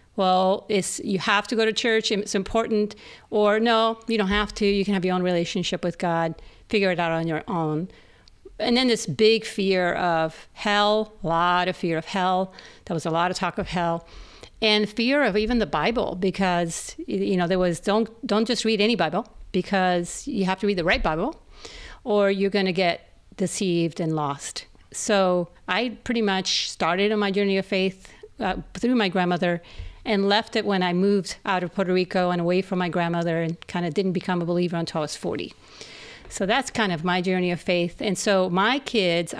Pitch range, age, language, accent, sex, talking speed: 175-215 Hz, 50-69, English, American, female, 205 wpm